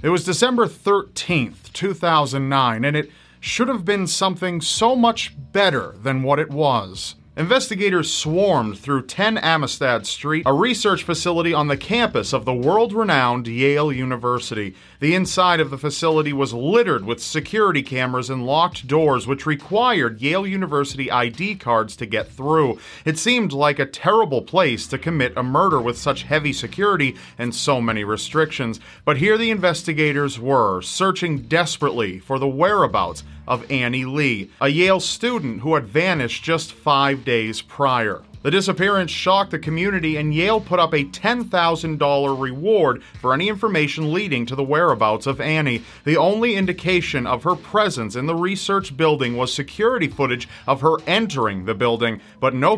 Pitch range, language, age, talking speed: 130-180 Hz, English, 40-59, 160 wpm